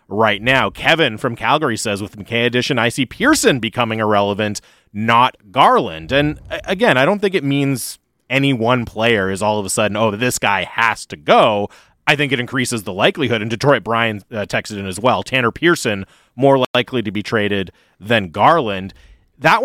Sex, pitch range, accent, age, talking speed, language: male, 105-135 Hz, American, 30-49, 185 wpm, English